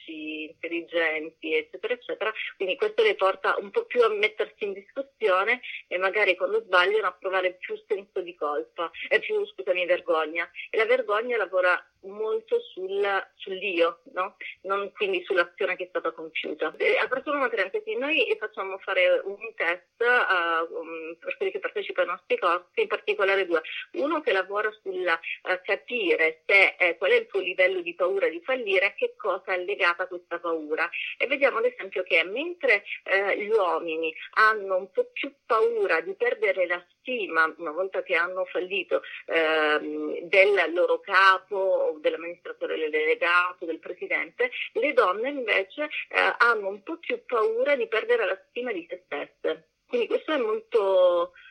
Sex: female